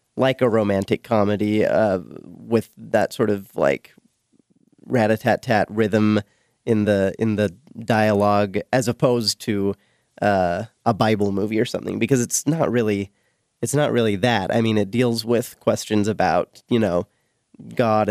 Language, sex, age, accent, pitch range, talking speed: English, male, 30-49, American, 100-115 Hz, 145 wpm